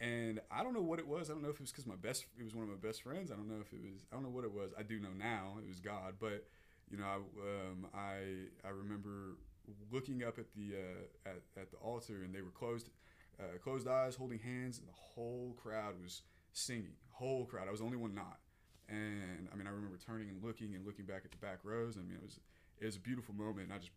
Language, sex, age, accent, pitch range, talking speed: English, male, 20-39, American, 95-115 Hz, 270 wpm